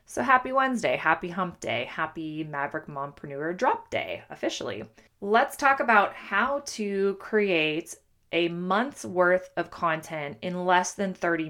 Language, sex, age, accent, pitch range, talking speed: English, female, 20-39, American, 155-195 Hz, 140 wpm